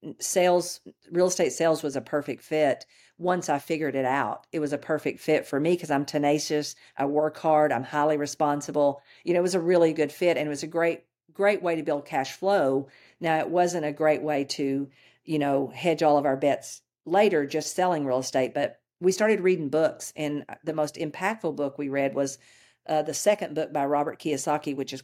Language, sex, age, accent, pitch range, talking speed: English, female, 50-69, American, 140-170 Hz, 215 wpm